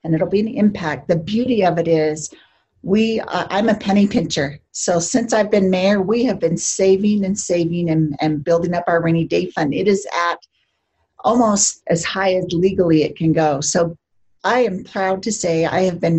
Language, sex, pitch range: English, female, 155-200 Hz